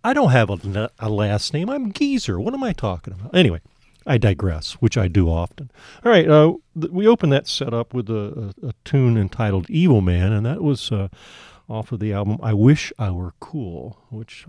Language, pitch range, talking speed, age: English, 100-140 Hz, 215 wpm, 40-59